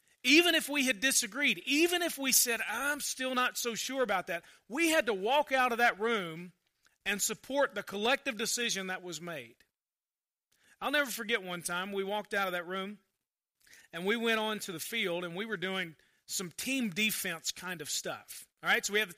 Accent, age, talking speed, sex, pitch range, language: American, 40-59, 205 wpm, male, 190-255 Hz, English